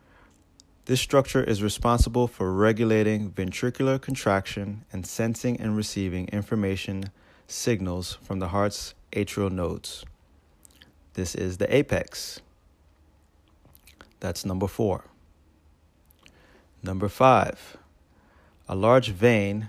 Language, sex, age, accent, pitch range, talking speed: English, male, 30-49, American, 90-110 Hz, 95 wpm